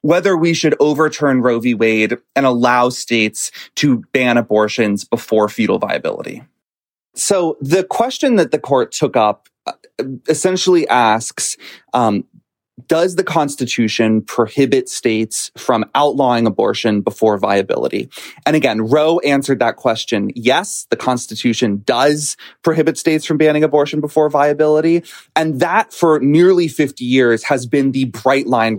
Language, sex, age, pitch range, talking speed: English, male, 30-49, 120-155 Hz, 135 wpm